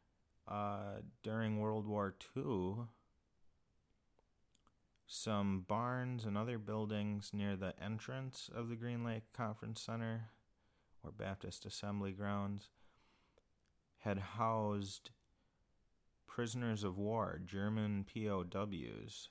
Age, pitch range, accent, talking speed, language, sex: 30-49, 85-110 Hz, American, 95 wpm, English, male